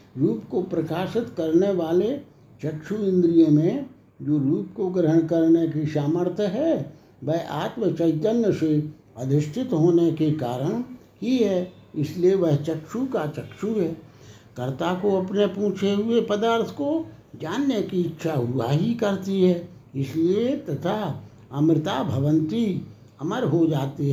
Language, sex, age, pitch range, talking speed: Hindi, male, 60-79, 150-190 Hz, 130 wpm